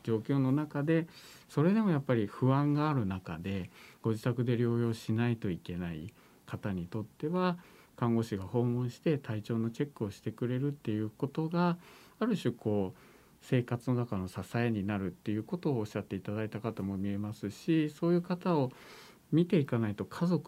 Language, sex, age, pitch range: Japanese, male, 50-69, 100-155 Hz